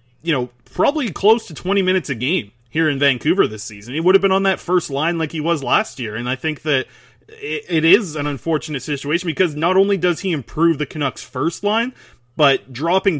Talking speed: 225 wpm